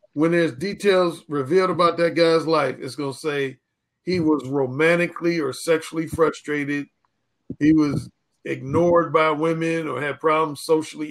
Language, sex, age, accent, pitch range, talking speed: English, male, 50-69, American, 140-170 Hz, 145 wpm